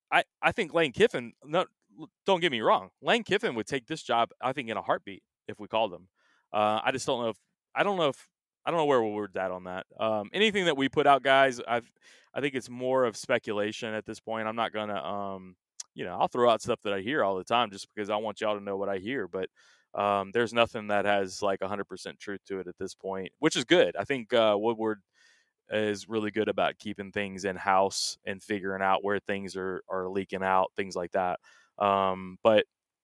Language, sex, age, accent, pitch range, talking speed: English, male, 20-39, American, 100-115 Hz, 230 wpm